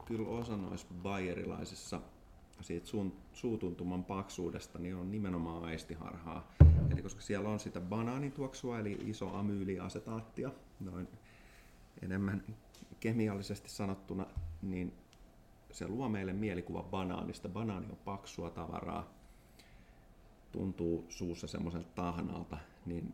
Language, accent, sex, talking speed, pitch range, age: Finnish, native, male, 100 wpm, 85-105 Hz, 30-49